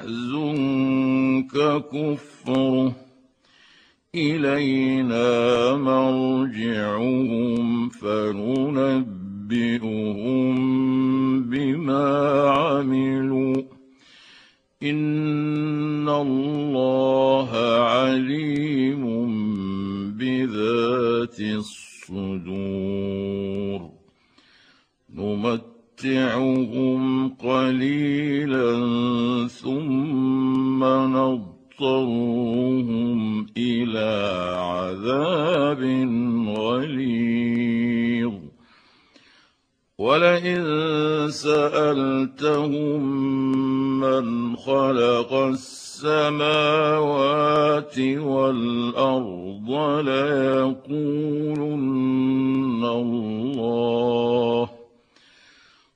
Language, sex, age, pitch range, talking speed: Arabic, male, 60-79, 120-135 Hz, 30 wpm